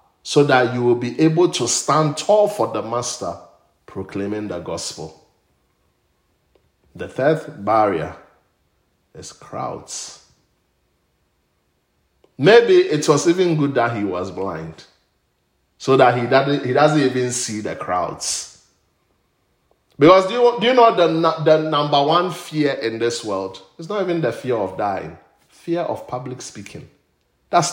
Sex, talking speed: male, 130 wpm